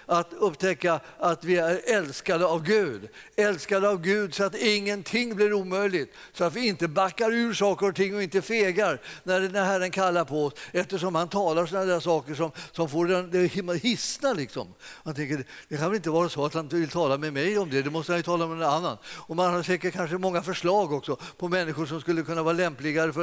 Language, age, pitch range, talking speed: Swedish, 50-69, 165-205 Hz, 225 wpm